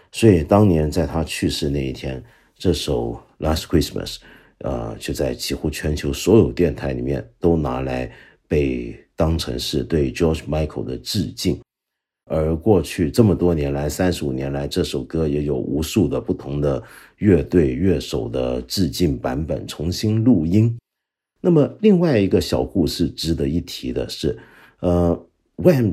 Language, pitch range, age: Chinese, 75-100 Hz, 50-69